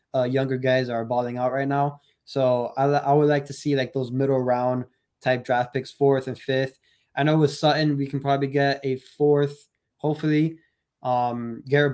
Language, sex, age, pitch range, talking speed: English, male, 20-39, 120-140 Hz, 190 wpm